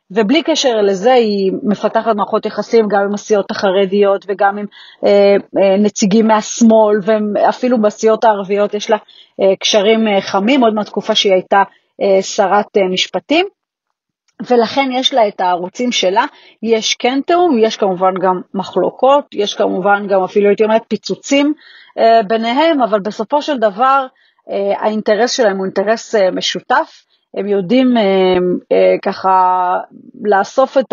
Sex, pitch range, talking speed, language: female, 195-230 Hz, 145 wpm, Hebrew